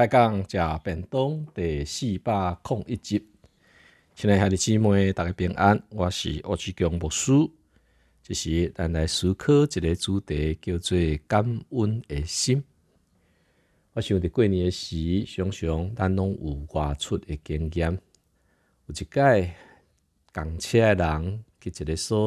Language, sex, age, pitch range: Chinese, male, 50-69, 80-105 Hz